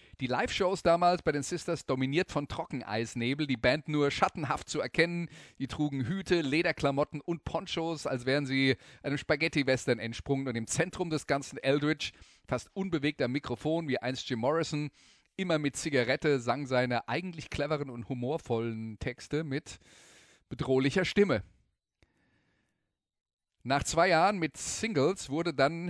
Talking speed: 140 wpm